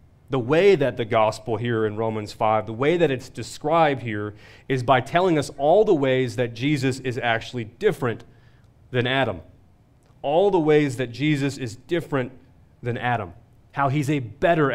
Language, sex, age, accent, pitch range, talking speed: English, male, 30-49, American, 120-145 Hz, 170 wpm